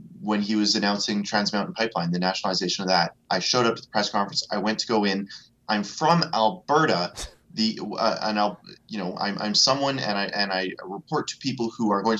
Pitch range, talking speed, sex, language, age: 100-115 Hz, 220 wpm, male, English, 20-39